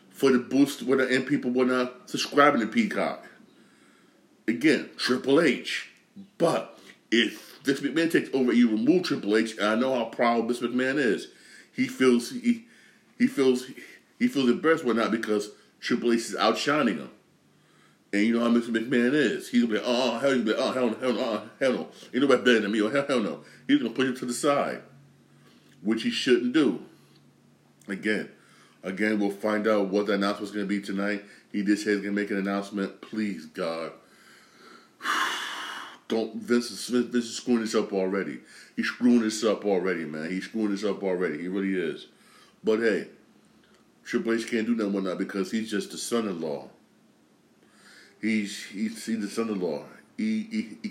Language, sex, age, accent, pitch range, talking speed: English, male, 40-59, American, 100-125 Hz, 190 wpm